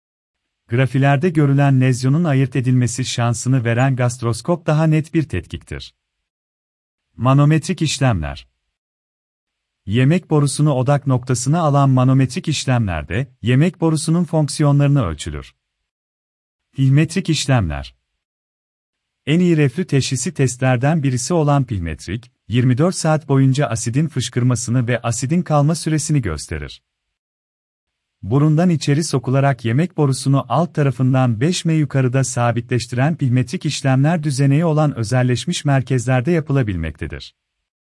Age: 40-59